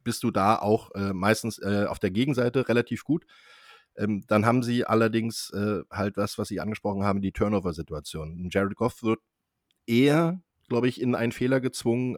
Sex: male